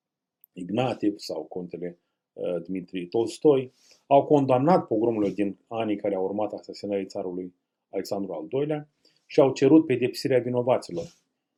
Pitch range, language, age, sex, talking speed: 100-145 Hz, Romanian, 30-49, male, 125 wpm